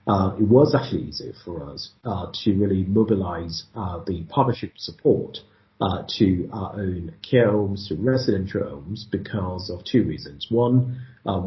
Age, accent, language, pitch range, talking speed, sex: 40-59, British, English, 95-115 Hz, 150 wpm, male